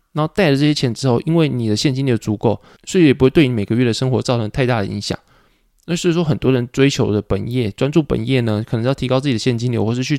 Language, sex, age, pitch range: Chinese, male, 20-39, 115-145 Hz